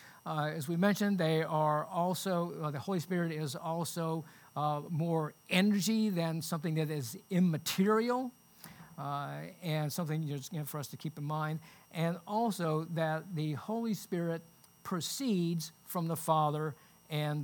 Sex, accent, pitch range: male, American, 150-190 Hz